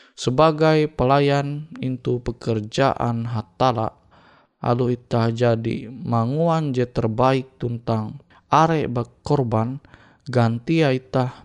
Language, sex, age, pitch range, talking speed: Indonesian, male, 20-39, 115-150 Hz, 85 wpm